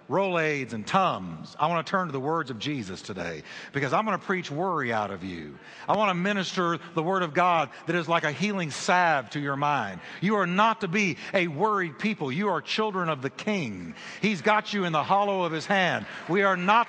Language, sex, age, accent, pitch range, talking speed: English, male, 60-79, American, 155-205 Hz, 240 wpm